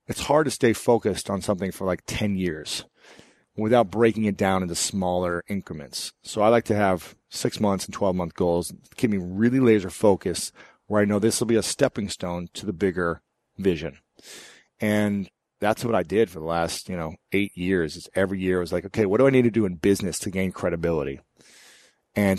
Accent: American